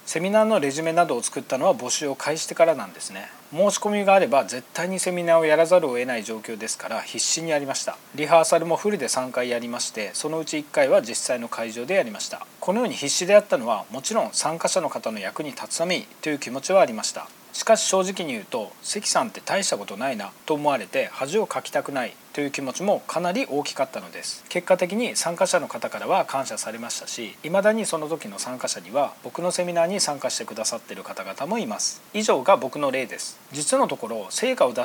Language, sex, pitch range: Japanese, male, 150-200 Hz